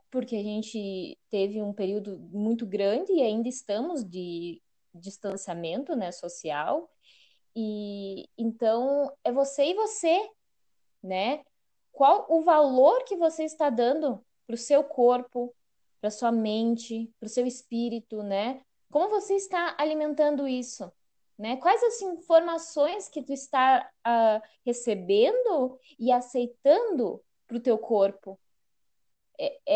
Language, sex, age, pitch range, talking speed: Portuguese, female, 20-39, 205-280 Hz, 125 wpm